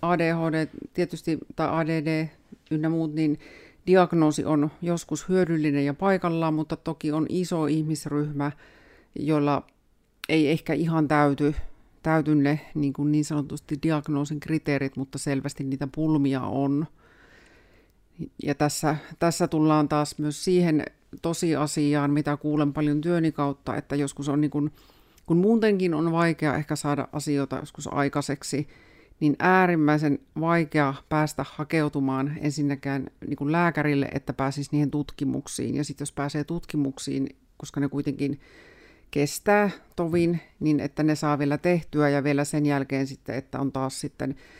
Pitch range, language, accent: 145-160 Hz, Finnish, native